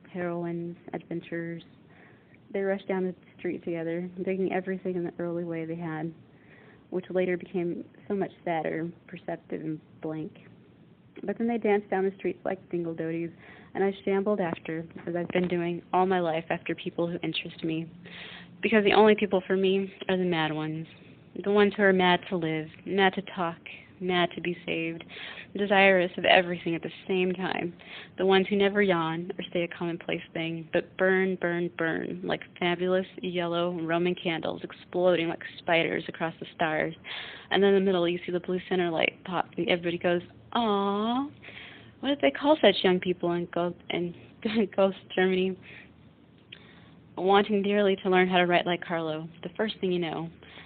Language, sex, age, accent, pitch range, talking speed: English, female, 30-49, American, 170-190 Hz, 175 wpm